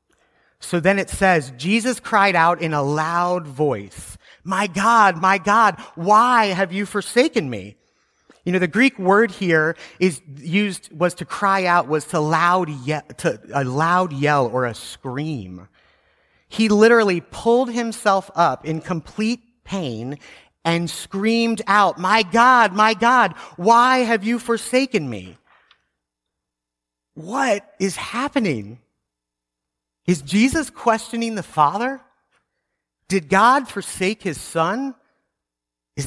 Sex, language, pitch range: male, English, 135-210 Hz